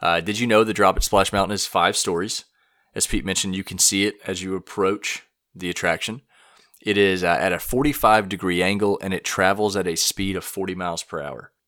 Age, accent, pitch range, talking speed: 30-49, American, 90-105 Hz, 215 wpm